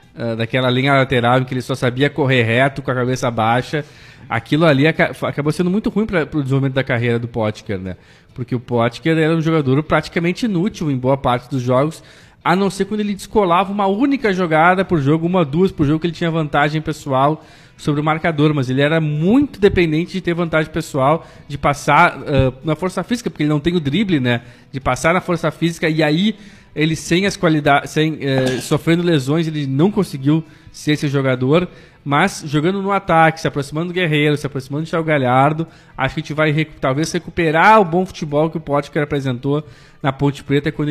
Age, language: 20-39, Portuguese